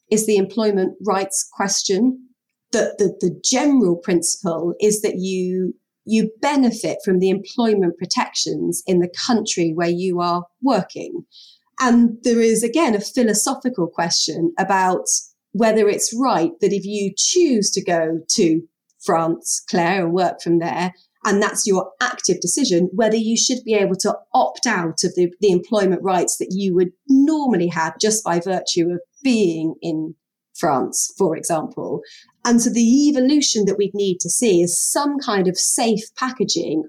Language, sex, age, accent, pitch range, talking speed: English, female, 30-49, British, 175-225 Hz, 160 wpm